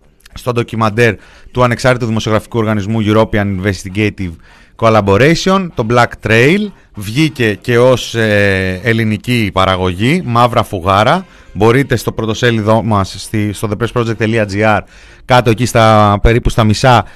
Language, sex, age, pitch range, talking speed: Greek, male, 30-49, 100-120 Hz, 110 wpm